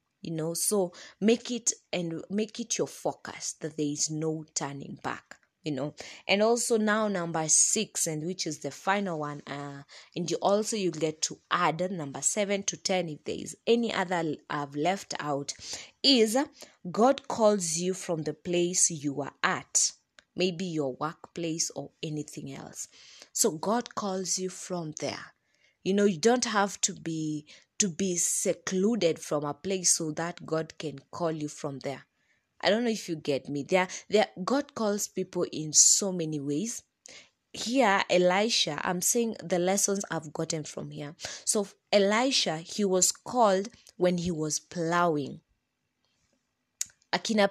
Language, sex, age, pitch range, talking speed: English, female, 20-39, 160-205 Hz, 160 wpm